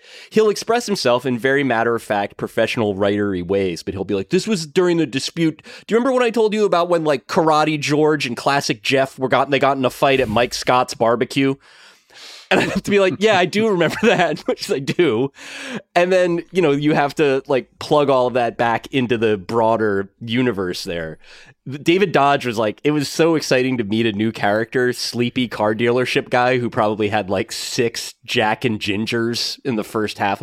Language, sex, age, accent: English, male, 20-39, American